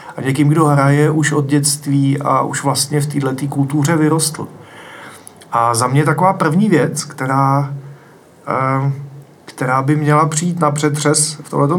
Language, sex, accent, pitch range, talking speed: Czech, male, native, 135-155 Hz, 150 wpm